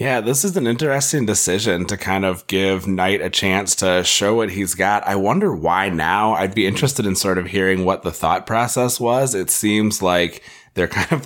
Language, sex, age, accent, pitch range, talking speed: English, male, 20-39, American, 90-115 Hz, 215 wpm